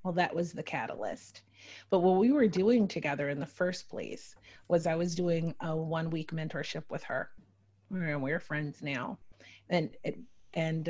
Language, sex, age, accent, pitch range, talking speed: English, female, 30-49, American, 155-180 Hz, 170 wpm